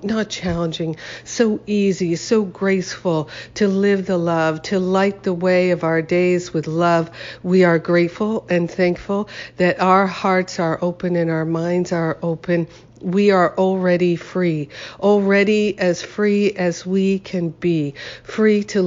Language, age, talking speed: English, 50-69, 150 wpm